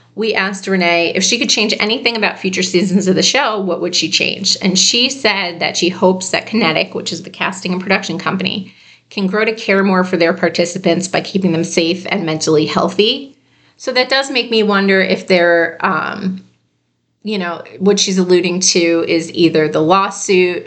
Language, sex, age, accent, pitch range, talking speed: English, female, 30-49, American, 165-195 Hz, 195 wpm